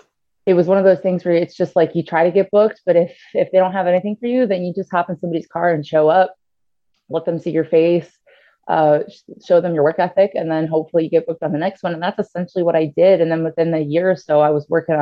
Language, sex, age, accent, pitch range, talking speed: English, female, 20-39, American, 150-175 Hz, 285 wpm